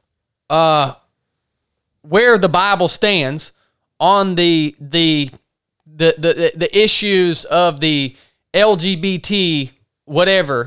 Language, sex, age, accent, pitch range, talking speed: English, male, 20-39, American, 145-210 Hz, 90 wpm